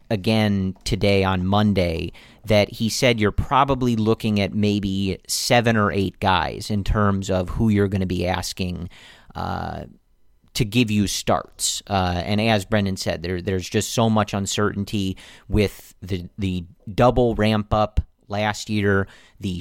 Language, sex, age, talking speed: English, male, 40-59, 155 wpm